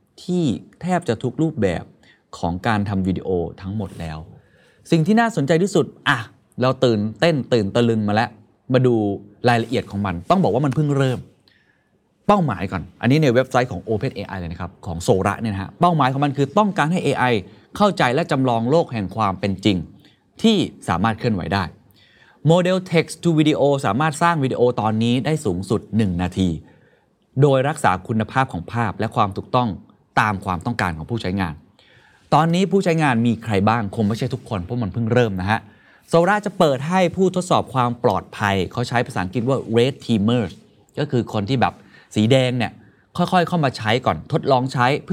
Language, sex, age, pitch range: Thai, male, 20-39, 100-145 Hz